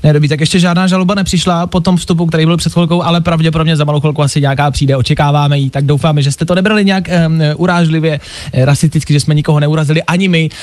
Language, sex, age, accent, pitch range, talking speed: Czech, male, 20-39, native, 150-195 Hz, 215 wpm